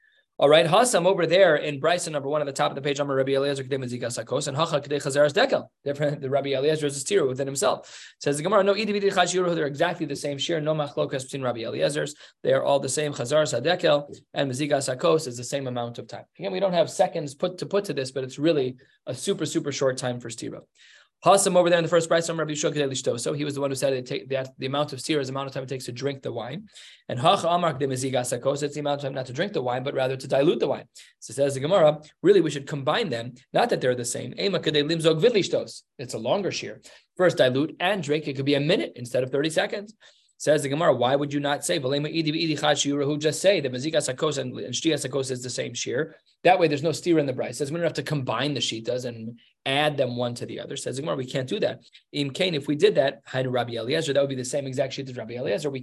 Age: 20-39